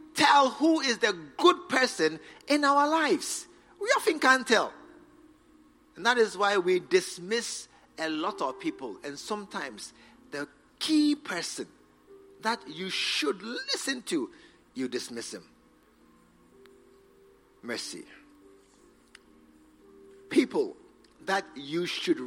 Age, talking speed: 50-69, 110 wpm